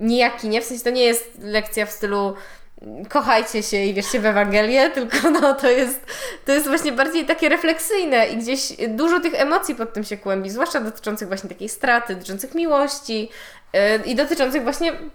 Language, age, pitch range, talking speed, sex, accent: Polish, 20-39, 225-280 Hz, 175 wpm, female, native